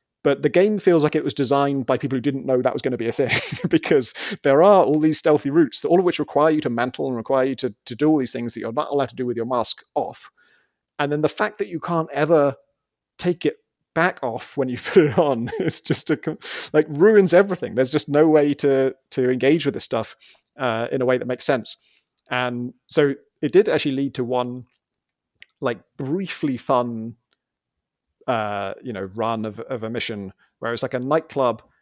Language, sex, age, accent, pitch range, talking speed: English, male, 30-49, British, 120-150 Hz, 220 wpm